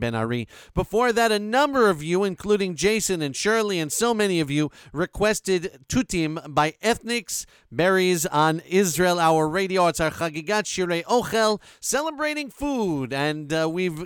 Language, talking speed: English, 150 wpm